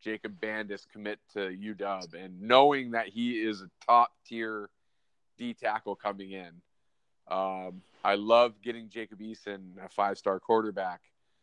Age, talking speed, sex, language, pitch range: 20-39, 135 wpm, male, English, 100-120 Hz